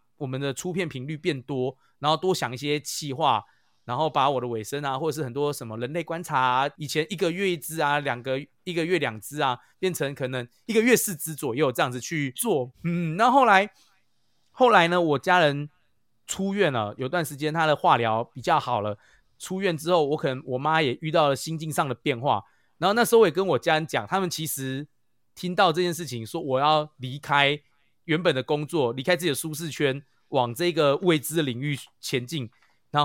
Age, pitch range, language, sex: 20-39, 130-175 Hz, Chinese, male